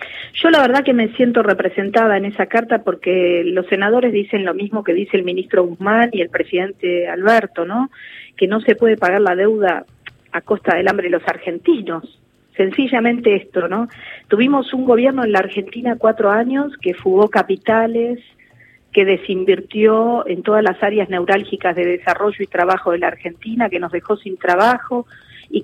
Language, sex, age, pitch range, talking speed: Spanish, female, 40-59, 185-230 Hz, 175 wpm